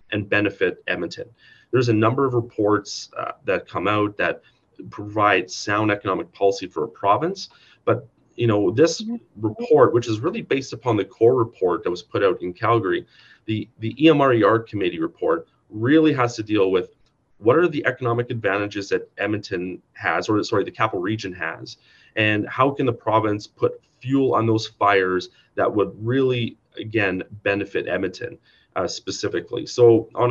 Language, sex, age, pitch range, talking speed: English, male, 30-49, 95-120 Hz, 165 wpm